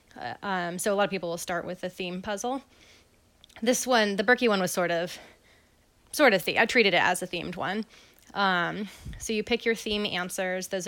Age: 20-39